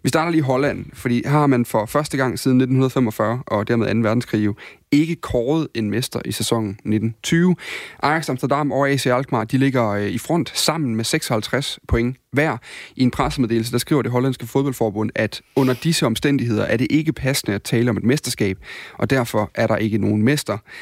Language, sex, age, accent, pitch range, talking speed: Danish, male, 30-49, native, 110-135 Hz, 195 wpm